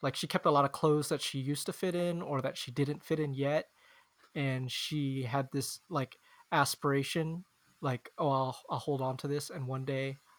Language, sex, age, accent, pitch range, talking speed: English, male, 20-39, American, 135-160 Hz, 215 wpm